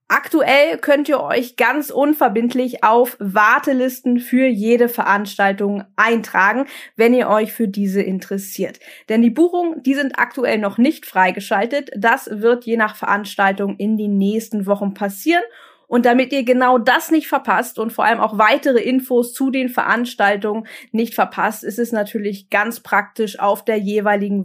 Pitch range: 200-250 Hz